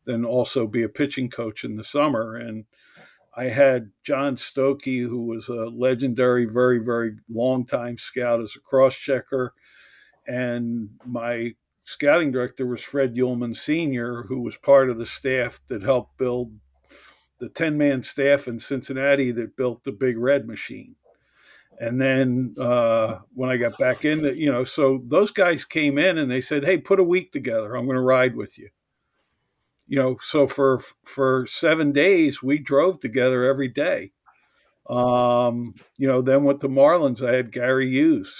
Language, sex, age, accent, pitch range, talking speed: English, male, 50-69, American, 120-140 Hz, 170 wpm